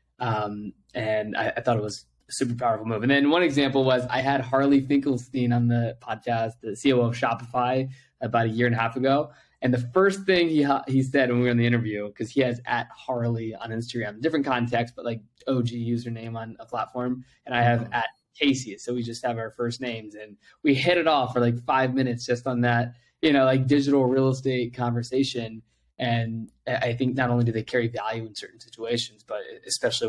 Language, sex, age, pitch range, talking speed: English, male, 20-39, 115-135 Hz, 215 wpm